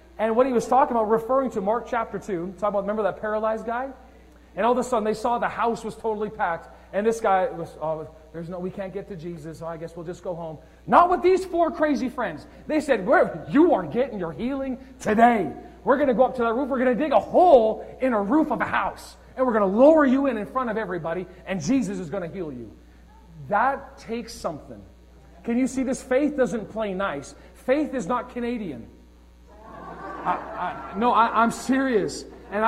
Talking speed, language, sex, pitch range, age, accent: 220 wpm, English, male, 190-255 Hz, 40-59, American